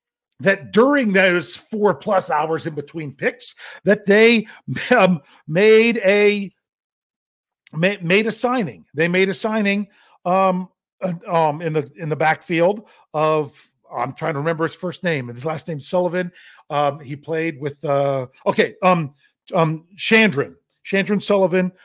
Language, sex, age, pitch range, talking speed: English, male, 40-59, 150-200 Hz, 140 wpm